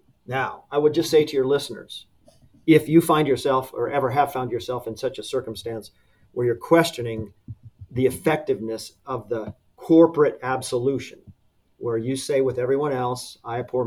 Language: English